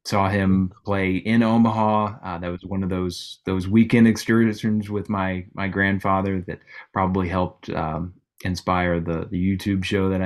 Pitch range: 85-100 Hz